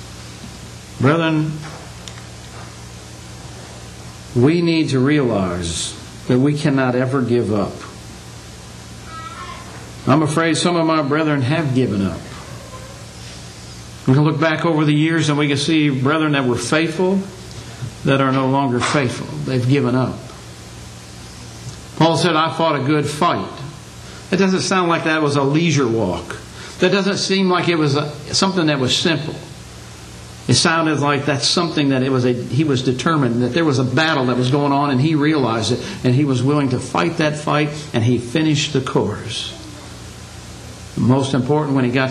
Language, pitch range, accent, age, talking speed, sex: English, 105-160 Hz, American, 60-79, 160 wpm, male